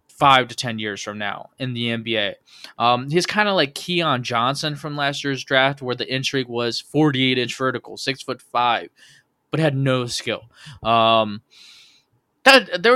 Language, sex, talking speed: English, male, 170 wpm